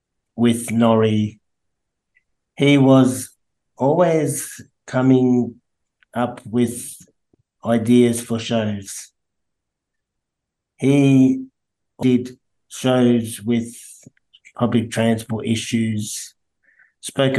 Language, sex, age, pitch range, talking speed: English, male, 50-69, 110-120 Hz, 65 wpm